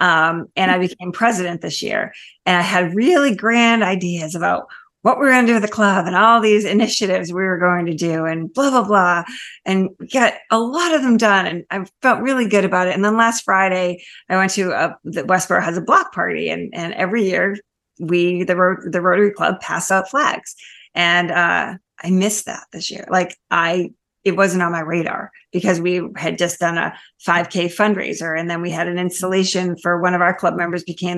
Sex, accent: female, American